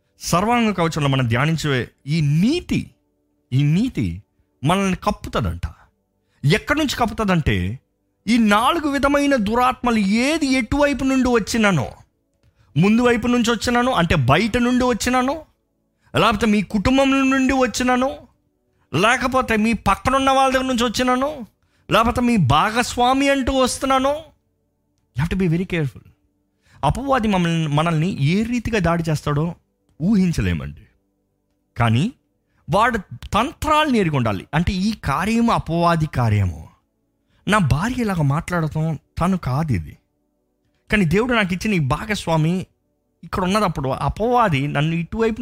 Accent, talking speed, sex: native, 110 wpm, male